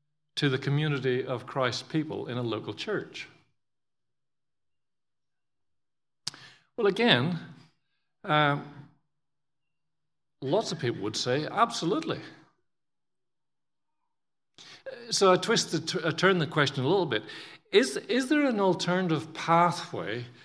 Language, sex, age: English, male, 50-69